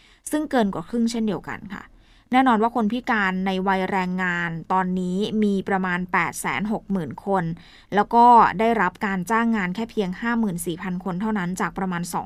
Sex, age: female, 20-39